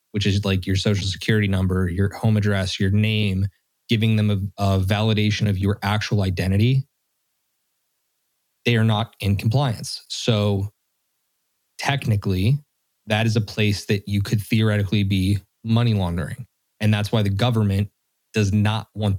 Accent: American